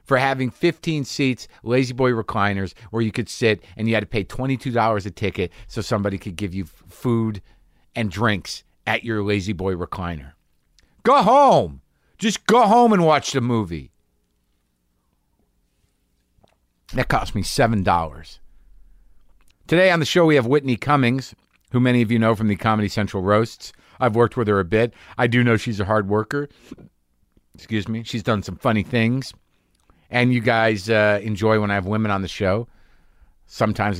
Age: 50-69